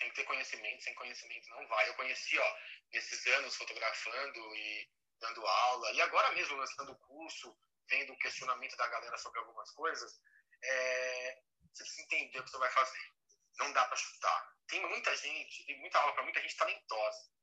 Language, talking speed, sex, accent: Portuguese, 185 wpm, male, Brazilian